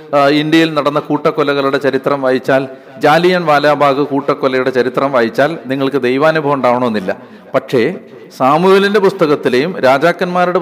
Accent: native